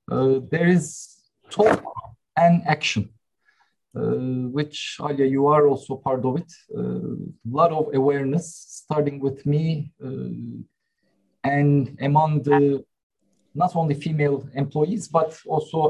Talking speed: 125 wpm